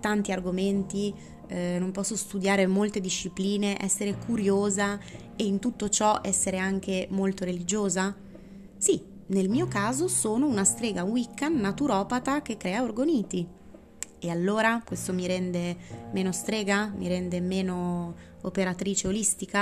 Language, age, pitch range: Italian, 20-39, 180-200 Hz